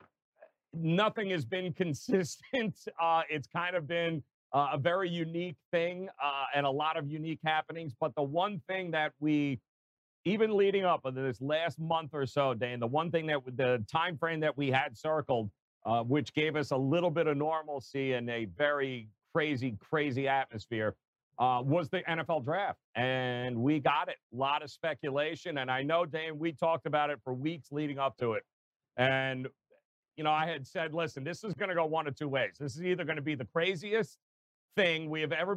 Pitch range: 135-170 Hz